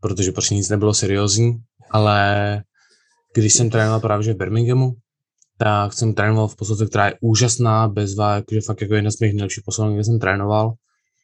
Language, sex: Czech, male